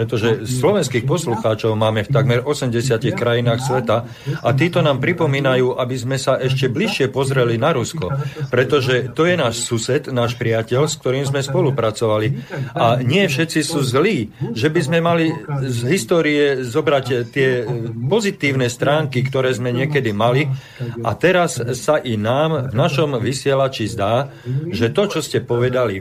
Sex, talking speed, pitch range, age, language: male, 150 wpm, 120-145 Hz, 40-59, Slovak